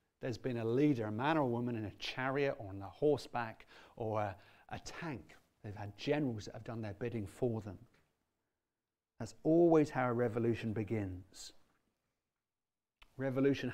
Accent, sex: British, male